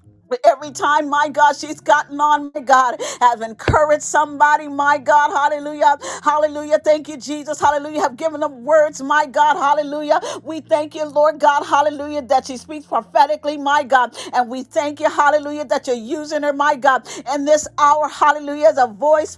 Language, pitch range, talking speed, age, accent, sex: English, 285-305 Hz, 175 wpm, 50-69, American, female